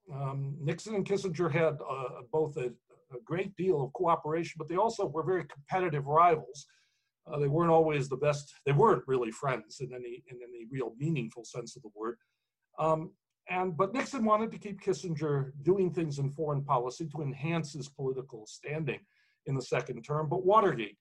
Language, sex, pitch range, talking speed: English, male, 135-185 Hz, 185 wpm